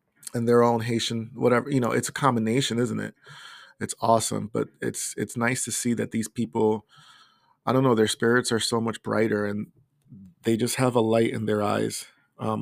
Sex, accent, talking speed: male, American, 200 wpm